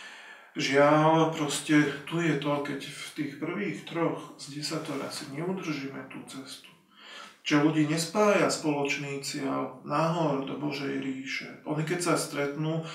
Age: 40-59